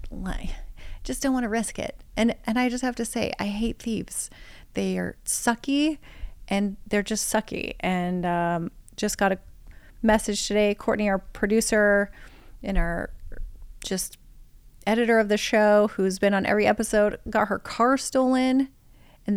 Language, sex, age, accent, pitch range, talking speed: English, female, 30-49, American, 180-225 Hz, 160 wpm